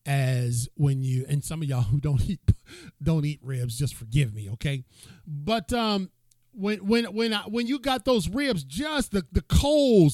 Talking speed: 185 wpm